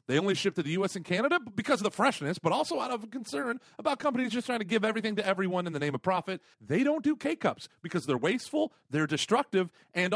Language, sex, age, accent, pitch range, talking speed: English, male, 40-59, American, 150-235 Hz, 240 wpm